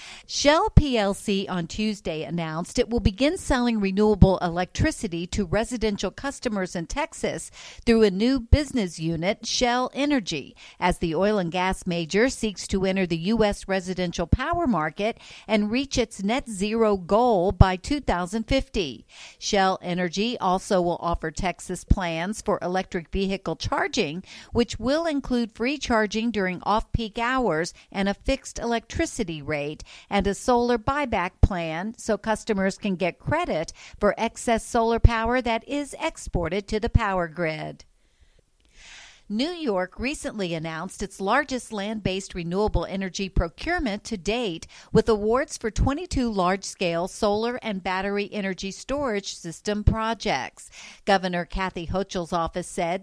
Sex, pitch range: female, 180-235 Hz